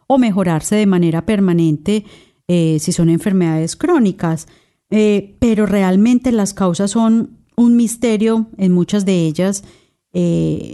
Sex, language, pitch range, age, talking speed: female, Spanish, 175-215 Hz, 30-49, 130 wpm